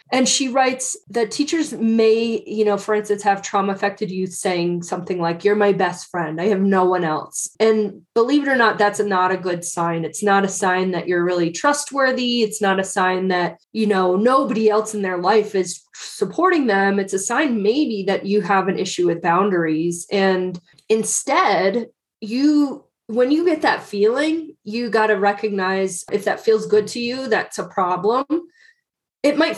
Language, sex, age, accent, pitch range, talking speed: English, female, 20-39, American, 180-220 Hz, 190 wpm